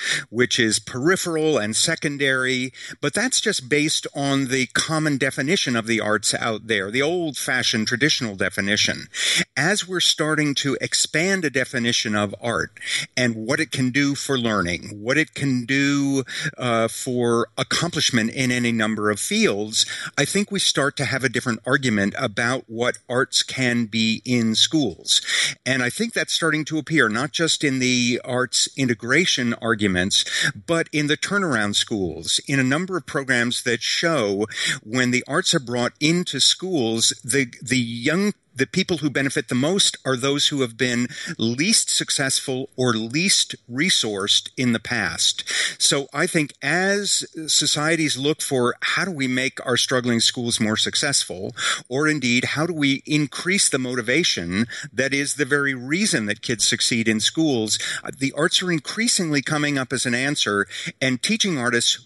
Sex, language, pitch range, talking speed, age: male, English, 120-155 Hz, 160 wpm, 50-69